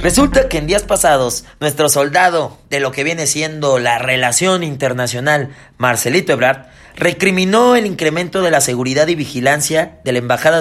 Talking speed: 160 wpm